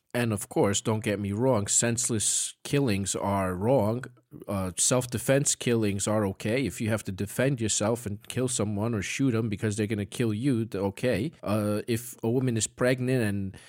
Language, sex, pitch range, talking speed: English, male, 100-130 Hz, 185 wpm